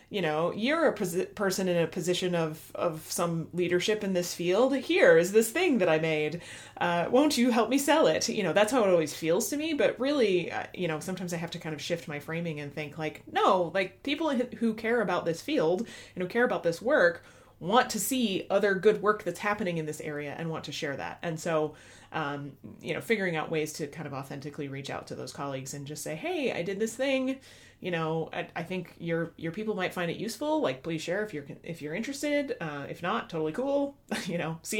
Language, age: English, 30-49